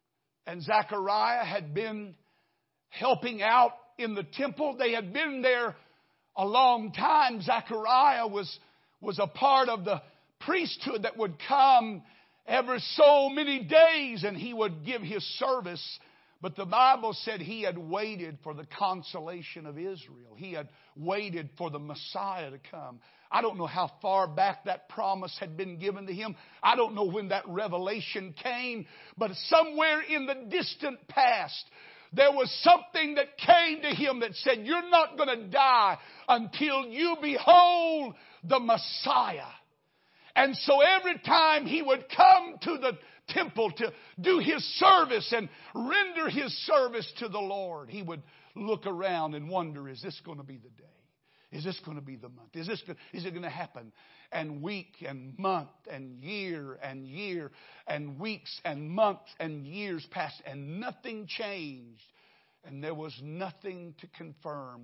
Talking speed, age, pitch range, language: 160 wpm, 50-69, 165-255 Hz, English